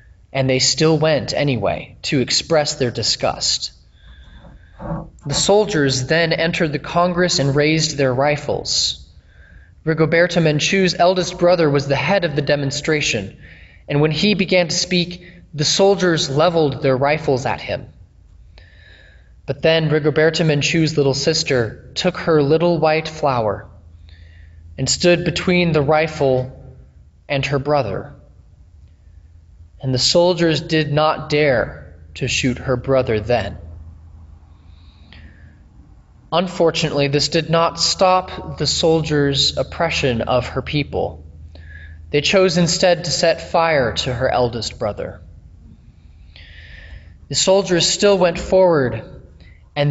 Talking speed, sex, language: 120 wpm, male, English